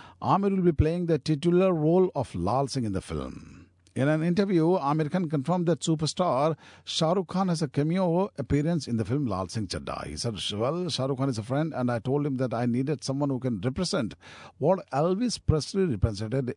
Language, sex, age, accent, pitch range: Japanese, male, 50-69, Indian, 115-155 Hz